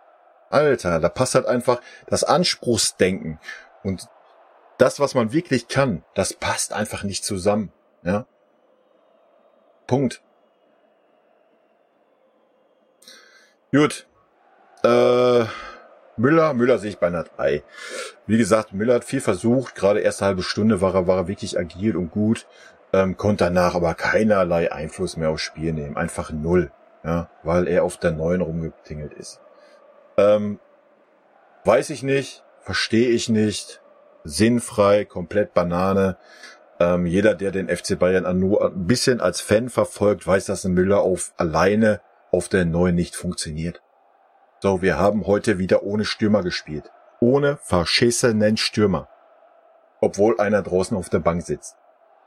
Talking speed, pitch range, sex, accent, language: 135 wpm, 90-120 Hz, male, German, German